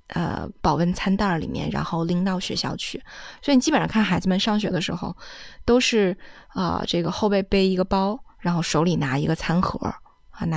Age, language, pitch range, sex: 20-39, Chinese, 180-230 Hz, female